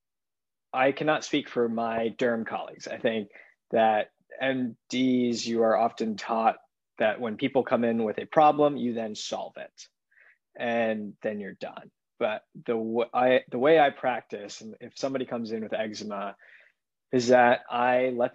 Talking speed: 165 wpm